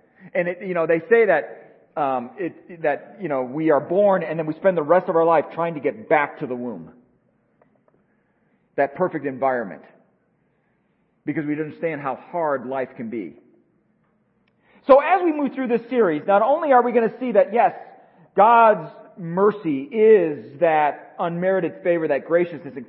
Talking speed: 175 wpm